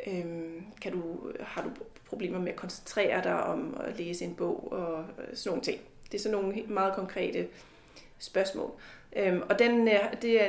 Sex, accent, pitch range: female, native, 185-220 Hz